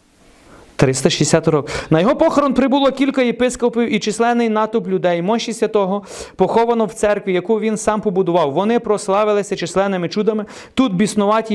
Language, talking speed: Ukrainian, 140 wpm